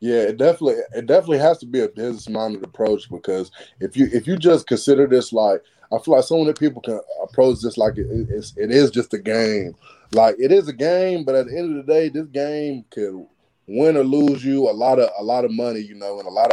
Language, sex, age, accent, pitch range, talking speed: English, male, 20-39, American, 105-135 Hz, 245 wpm